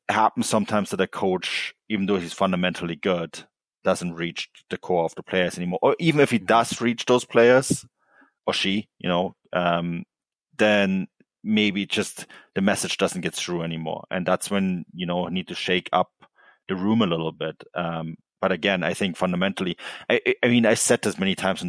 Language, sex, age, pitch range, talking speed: English, male, 30-49, 85-105 Hz, 190 wpm